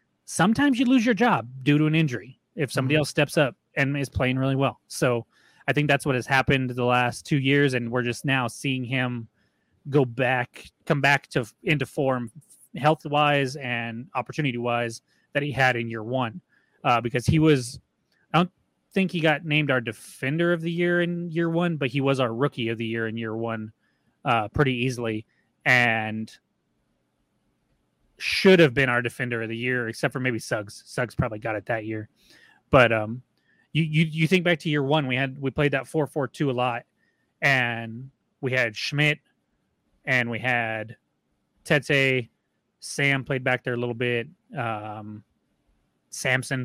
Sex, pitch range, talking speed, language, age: male, 115-145 Hz, 185 wpm, English, 30-49